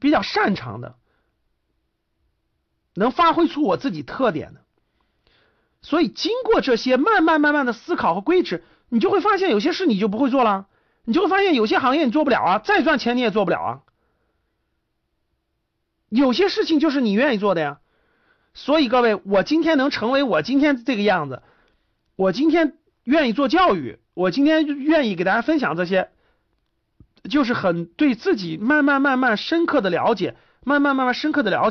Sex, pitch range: male, 205-315 Hz